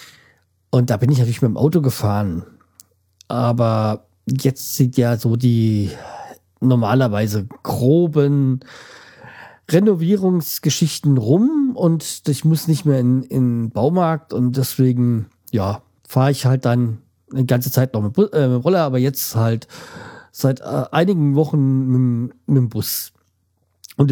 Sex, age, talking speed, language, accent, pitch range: male, 40-59, 135 wpm, German, German, 120-150 Hz